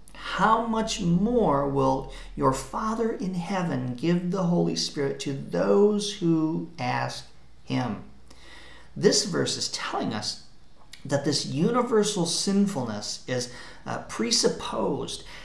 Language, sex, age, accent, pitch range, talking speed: English, male, 50-69, American, 135-195 Hz, 115 wpm